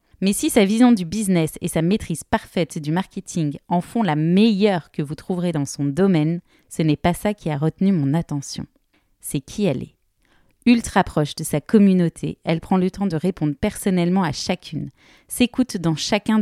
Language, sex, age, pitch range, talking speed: French, female, 30-49, 160-205 Hz, 190 wpm